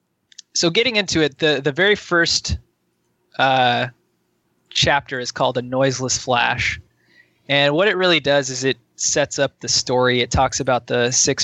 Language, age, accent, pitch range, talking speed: English, 20-39, American, 125-150 Hz, 165 wpm